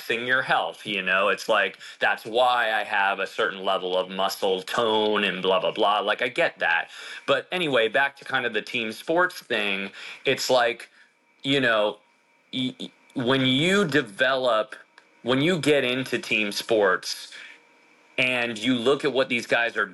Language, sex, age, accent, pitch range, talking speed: English, male, 30-49, American, 100-135 Hz, 165 wpm